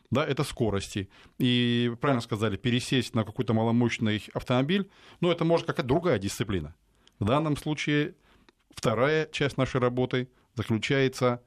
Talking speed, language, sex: 130 wpm, Russian, male